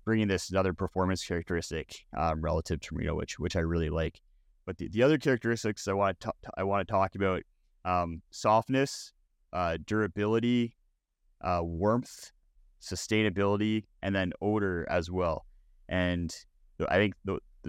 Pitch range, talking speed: 90-110 Hz, 145 wpm